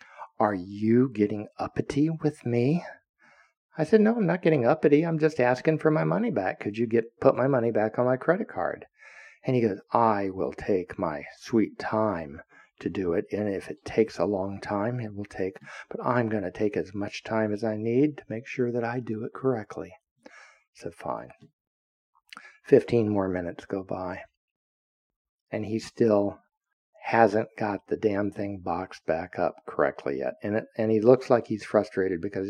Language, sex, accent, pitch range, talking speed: English, male, American, 100-140 Hz, 190 wpm